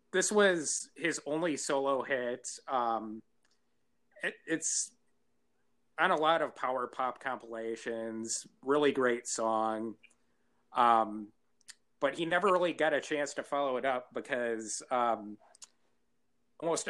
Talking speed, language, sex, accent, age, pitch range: 115 wpm, English, male, American, 30-49, 110-135 Hz